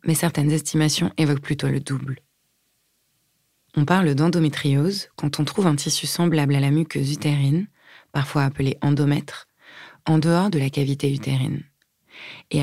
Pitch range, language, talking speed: 145-160 Hz, French, 145 wpm